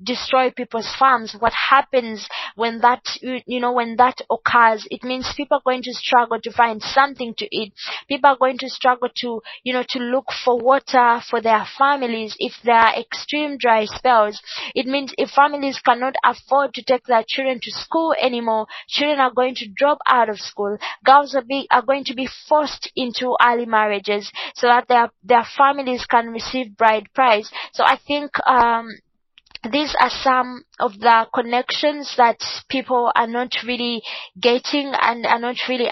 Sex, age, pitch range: female, 20-39, 235-265 Hz